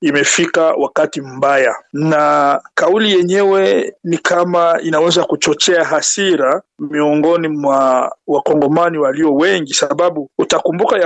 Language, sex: Swahili, male